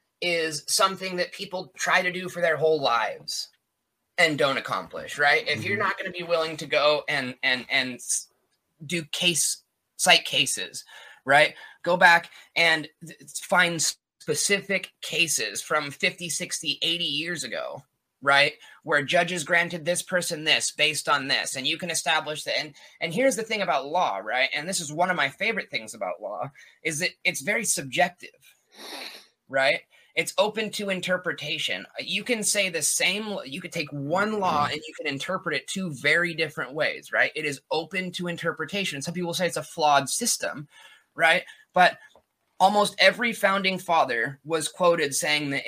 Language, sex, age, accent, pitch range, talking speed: English, male, 20-39, American, 150-185 Hz, 170 wpm